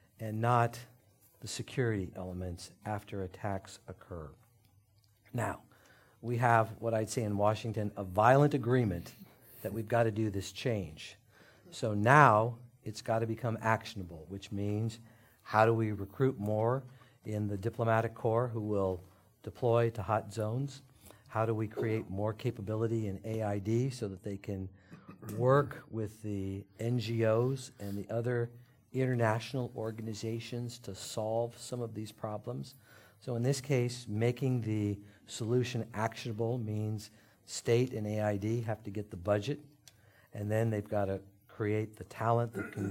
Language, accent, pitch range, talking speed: English, American, 105-120 Hz, 145 wpm